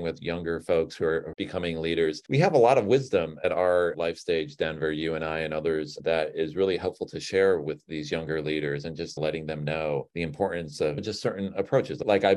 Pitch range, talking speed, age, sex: 80-105 Hz, 225 wpm, 40-59, male